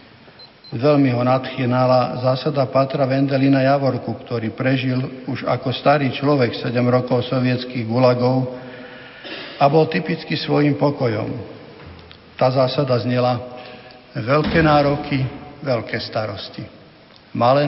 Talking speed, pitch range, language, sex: 100 wpm, 125-145 Hz, Slovak, male